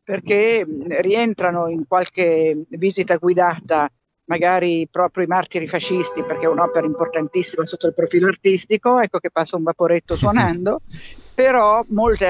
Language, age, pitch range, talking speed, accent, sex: Italian, 50-69, 165-195 Hz, 130 wpm, native, female